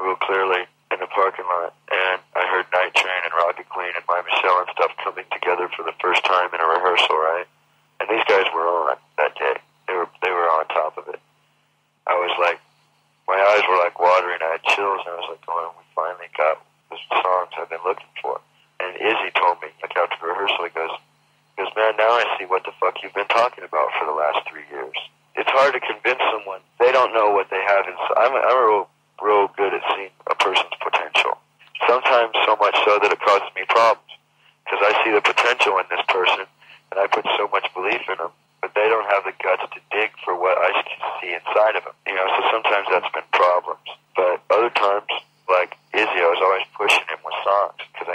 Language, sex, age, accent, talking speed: English, male, 40-59, American, 225 wpm